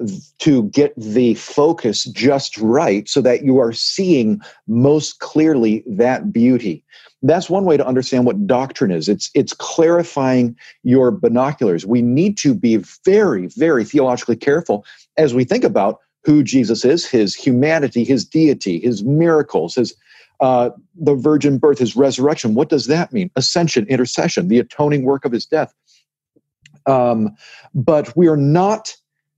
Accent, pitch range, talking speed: American, 120-155 Hz, 150 wpm